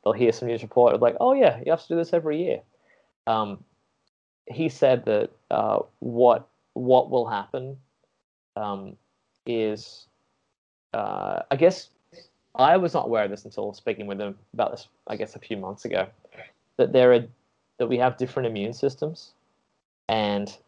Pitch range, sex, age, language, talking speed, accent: 110-135 Hz, male, 20-39, English, 170 wpm, Australian